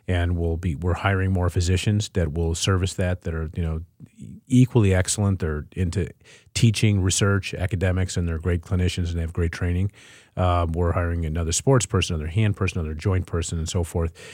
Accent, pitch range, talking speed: American, 90-105 Hz, 190 wpm